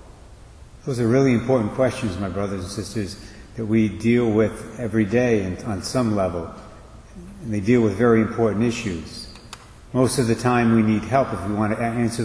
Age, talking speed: 50-69, 180 wpm